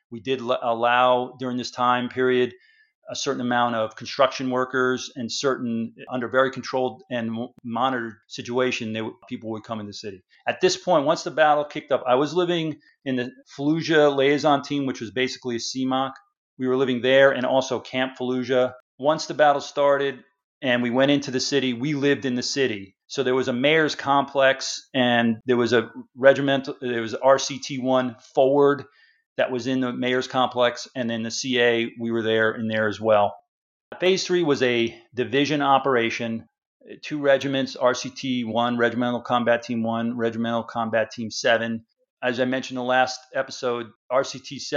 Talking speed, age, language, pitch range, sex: 175 wpm, 40-59, English, 120-135 Hz, male